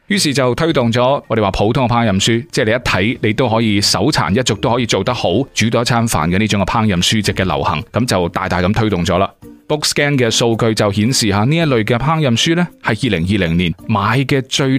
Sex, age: male, 30-49